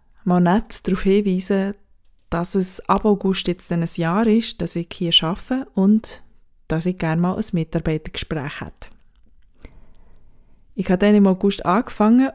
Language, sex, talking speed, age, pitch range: German, female, 145 wpm, 20-39, 175-215 Hz